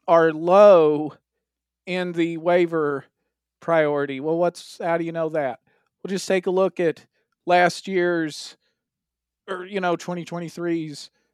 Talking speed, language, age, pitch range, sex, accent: 130 wpm, English, 40-59, 155-180 Hz, male, American